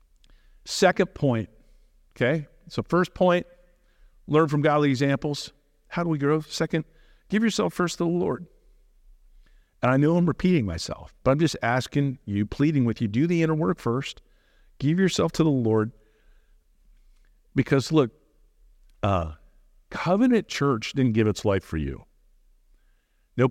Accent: American